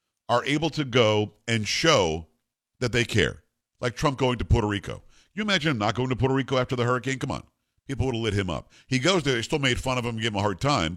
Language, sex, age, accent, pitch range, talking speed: English, male, 50-69, American, 115-155 Hz, 265 wpm